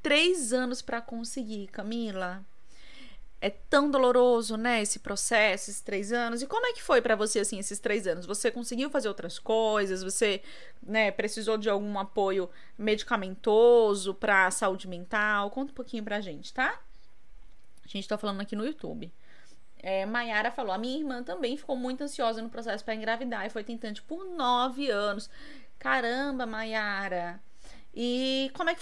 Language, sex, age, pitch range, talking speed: Portuguese, female, 20-39, 205-250 Hz, 165 wpm